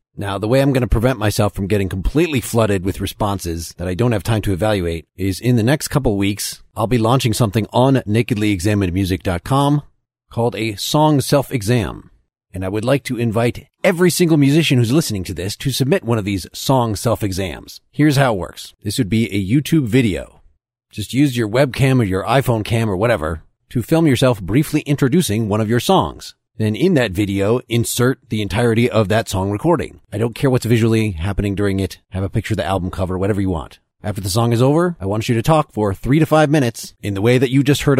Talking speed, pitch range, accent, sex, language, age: 220 wpm, 105-135 Hz, American, male, English, 40-59